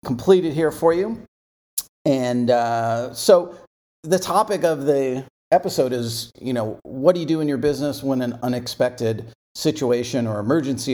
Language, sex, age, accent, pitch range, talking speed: English, male, 40-59, American, 115-160 Hz, 155 wpm